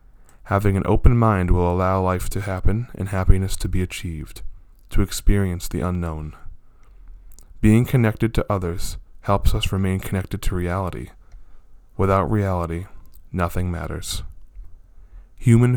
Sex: male